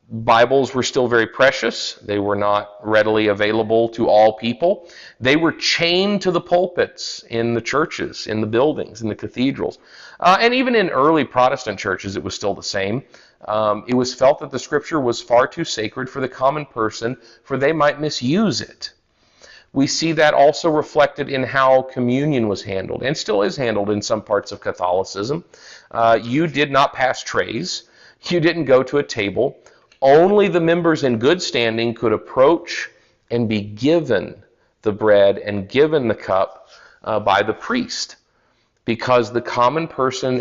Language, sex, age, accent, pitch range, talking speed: English, male, 40-59, American, 115-140 Hz, 170 wpm